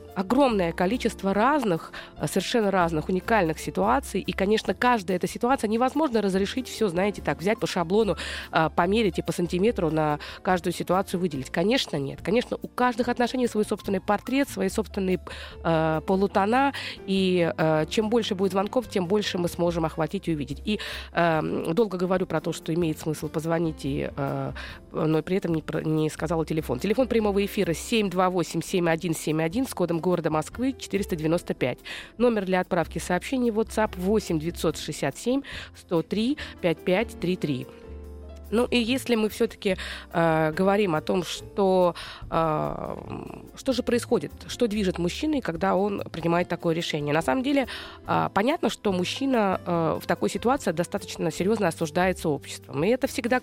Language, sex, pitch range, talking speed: Russian, female, 165-215 Hz, 145 wpm